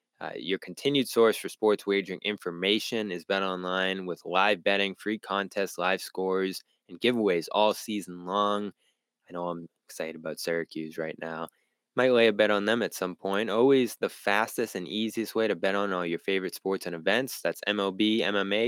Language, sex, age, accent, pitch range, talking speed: English, male, 20-39, American, 95-120 Hz, 185 wpm